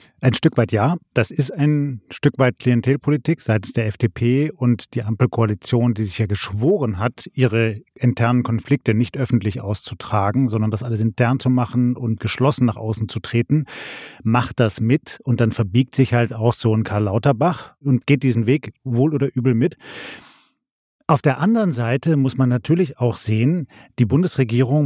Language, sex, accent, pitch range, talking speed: German, male, German, 115-140 Hz, 170 wpm